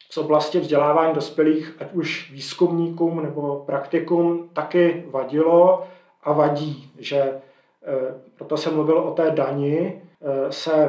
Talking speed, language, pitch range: 115 wpm, Czech, 140-160 Hz